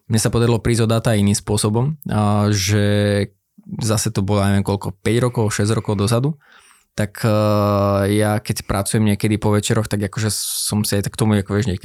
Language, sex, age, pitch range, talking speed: Slovak, male, 20-39, 105-120 Hz, 170 wpm